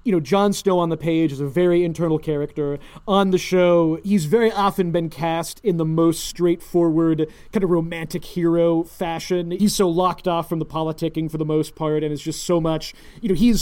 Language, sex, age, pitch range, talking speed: English, male, 30-49, 165-200 Hz, 210 wpm